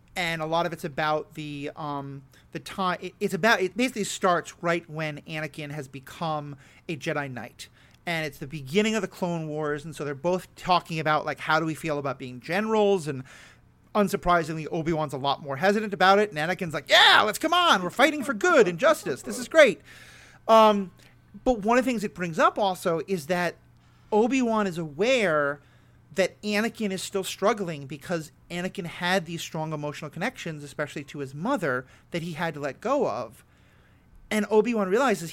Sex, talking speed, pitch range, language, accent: male, 190 wpm, 150-200 Hz, English, American